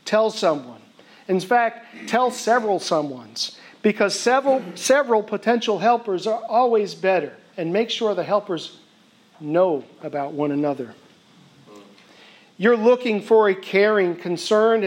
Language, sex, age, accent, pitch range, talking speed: English, male, 50-69, American, 170-225 Hz, 120 wpm